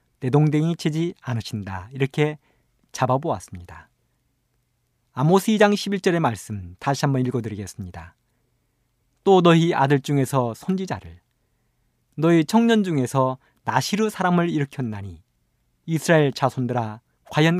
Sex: male